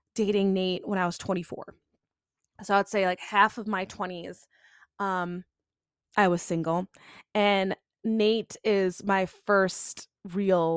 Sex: female